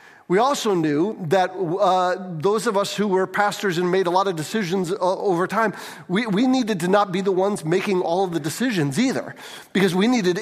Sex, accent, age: male, American, 40-59